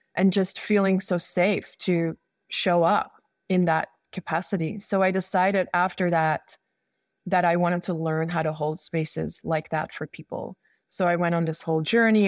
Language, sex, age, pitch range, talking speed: English, female, 20-39, 165-195 Hz, 175 wpm